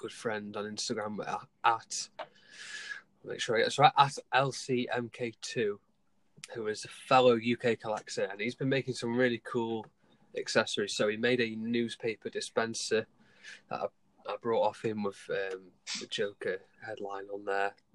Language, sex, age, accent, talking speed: English, male, 20-39, British, 145 wpm